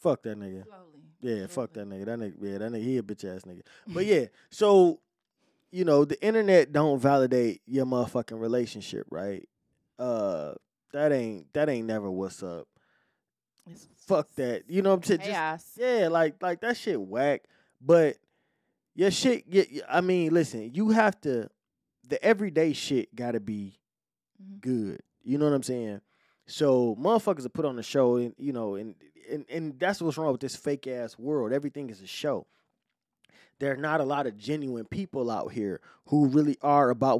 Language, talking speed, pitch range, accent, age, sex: English, 180 wpm, 120-165 Hz, American, 20-39, male